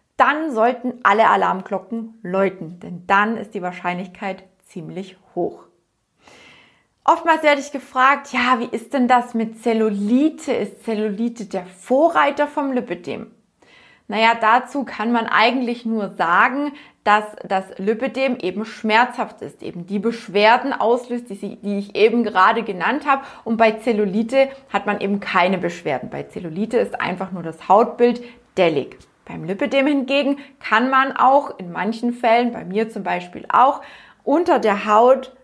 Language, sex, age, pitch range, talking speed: German, female, 20-39, 195-250 Hz, 145 wpm